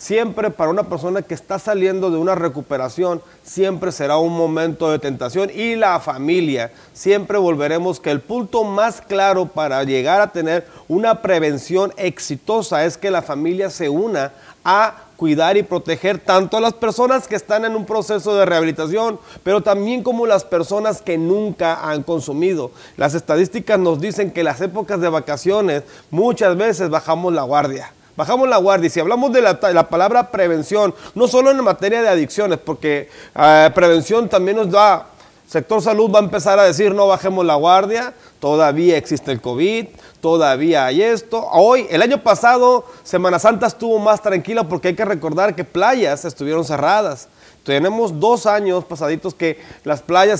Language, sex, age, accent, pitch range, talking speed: Spanish, male, 40-59, Mexican, 165-210 Hz, 170 wpm